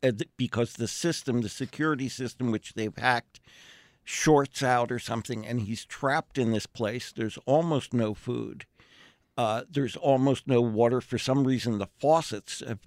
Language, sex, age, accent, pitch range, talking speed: English, male, 60-79, American, 115-140 Hz, 160 wpm